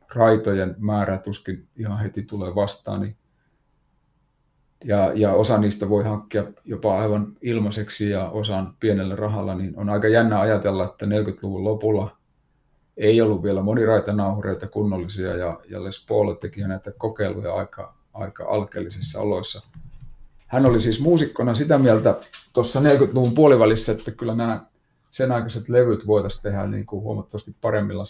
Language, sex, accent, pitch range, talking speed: Finnish, male, native, 100-120 Hz, 140 wpm